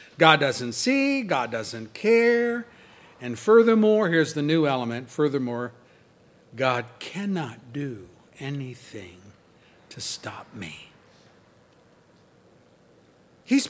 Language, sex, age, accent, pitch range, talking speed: English, male, 50-69, American, 120-165 Hz, 90 wpm